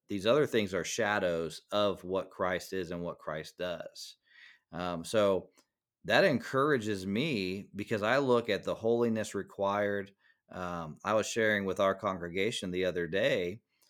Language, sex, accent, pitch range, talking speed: English, male, American, 90-110 Hz, 150 wpm